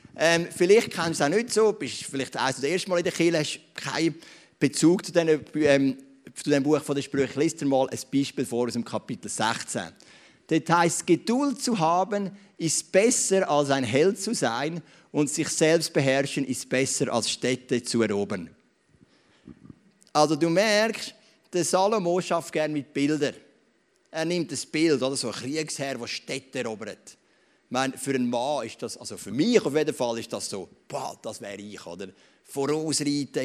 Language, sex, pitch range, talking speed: English, male, 135-165 Hz, 185 wpm